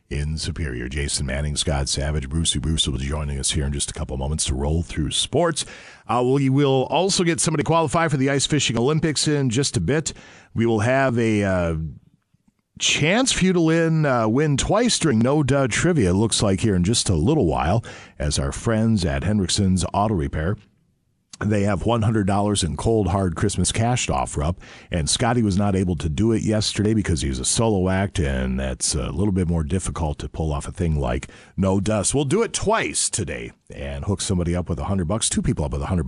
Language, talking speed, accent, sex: English, 215 wpm, American, male